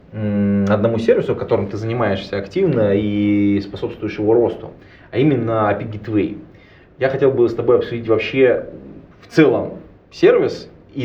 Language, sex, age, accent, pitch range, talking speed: Russian, male, 20-39, native, 105-135 Hz, 135 wpm